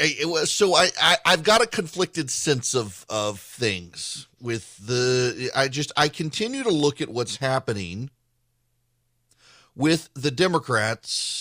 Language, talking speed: English, 140 wpm